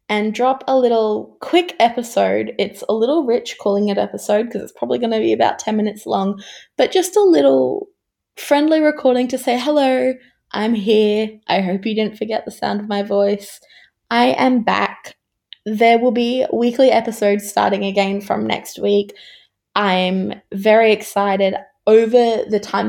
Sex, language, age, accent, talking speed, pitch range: female, English, 20-39, Australian, 165 wpm, 200-235 Hz